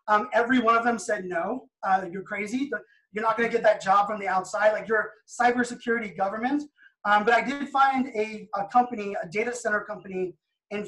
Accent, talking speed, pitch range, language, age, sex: American, 205 wpm, 200-240 Hz, English, 20-39, male